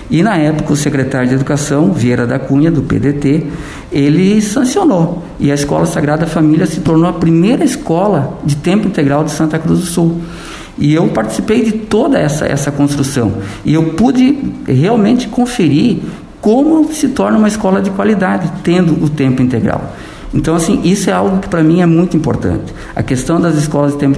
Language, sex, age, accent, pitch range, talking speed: Portuguese, male, 50-69, Brazilian, 135-170 Hz, 180 wpm